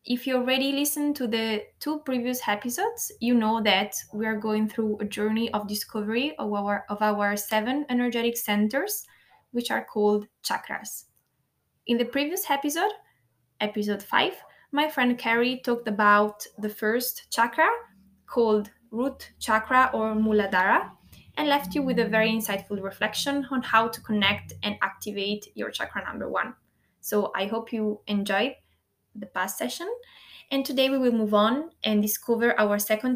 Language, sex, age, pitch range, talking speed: English, female, 20-39, 210-255 Hz, 155 wpm